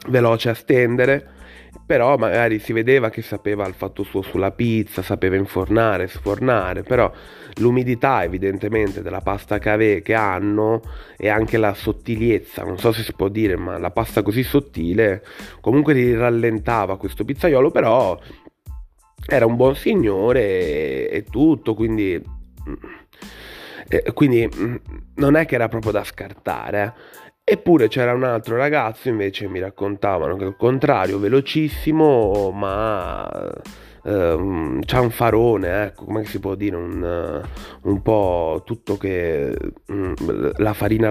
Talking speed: 140 wpm